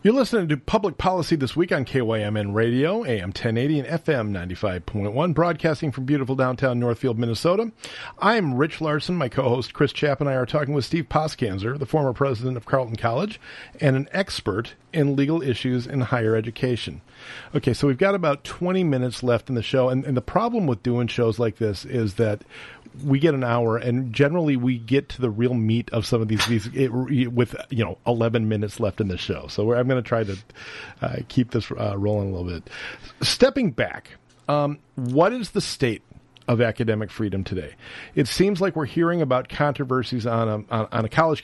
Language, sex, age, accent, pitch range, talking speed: English, male, 40-59, American, 115-145 Hz, 195 wpm